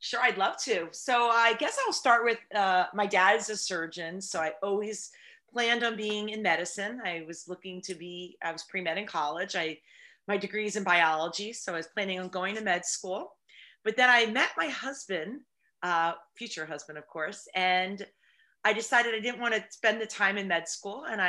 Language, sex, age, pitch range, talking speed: English, female, 40-59, 175-220 Hz, 210 wpm